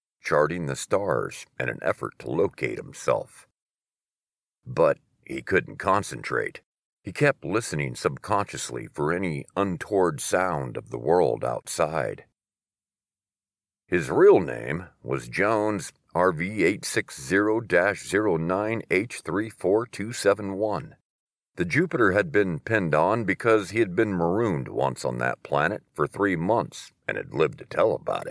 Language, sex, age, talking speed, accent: English, male, 50-69, 115 wpm, American